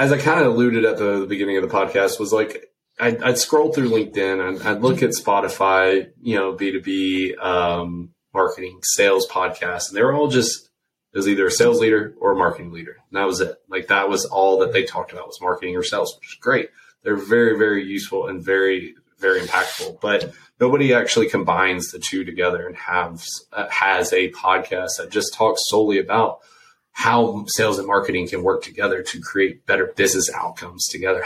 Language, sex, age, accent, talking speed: English, male, 20-39, American, 195 wpm